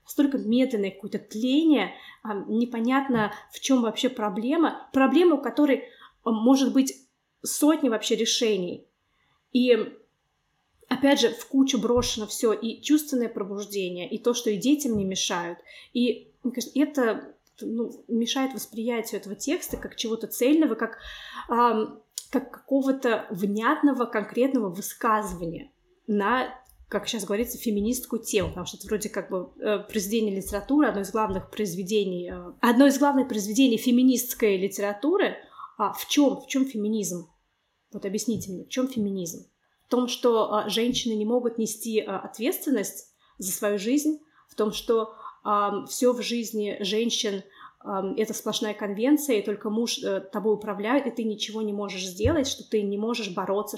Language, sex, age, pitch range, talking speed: Russian, female, 20-39, 210-255 Hz, 135 wpm